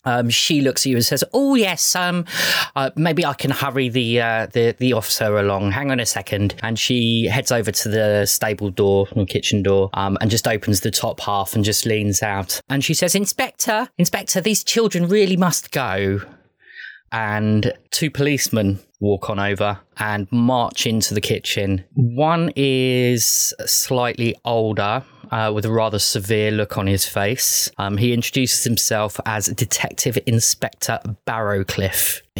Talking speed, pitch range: 165 wpm, 105-130 Hz